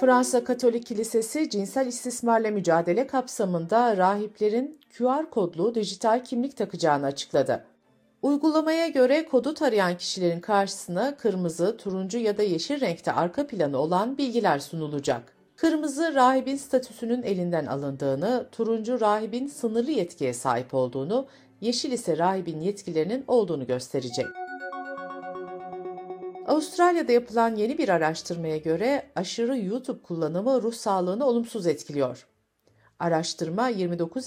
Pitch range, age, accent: 165-250 Hz, 60-79, native